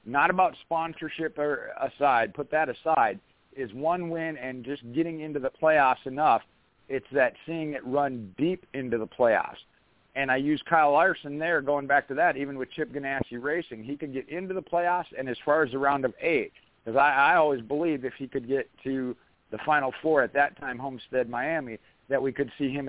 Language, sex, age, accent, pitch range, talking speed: English, male, 50-69, American, 130-155 Hz, 205 wpm